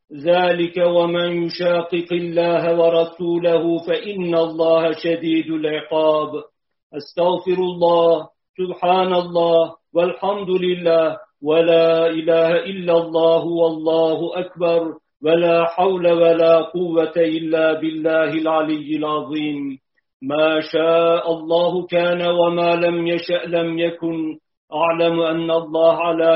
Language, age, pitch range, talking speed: Turkish, 50-69, 160-175 Hz, 95 wpm